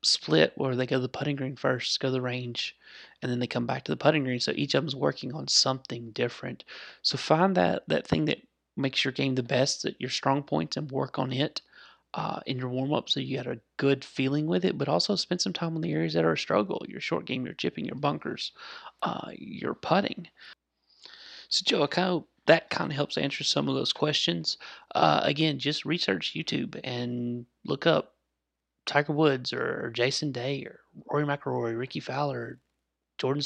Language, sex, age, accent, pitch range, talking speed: English, male, 30-49, American, 120-145 Hz, 205 wpm